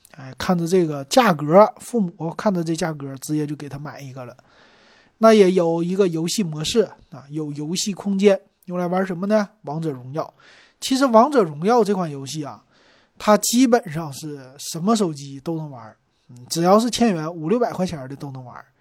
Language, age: Chinese, 20-39